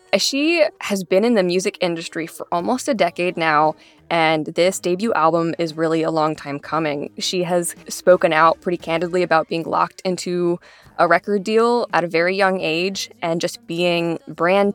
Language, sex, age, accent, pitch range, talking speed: English, female, 20-39, American, 170-195 Hz, 180 wpm